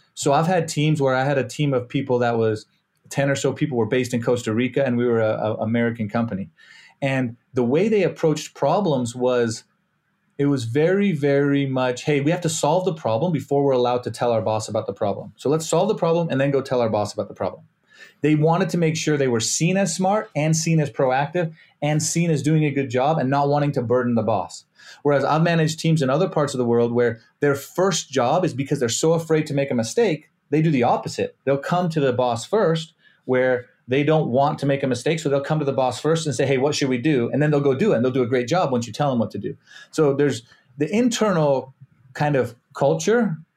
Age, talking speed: 30-49, 250 wpm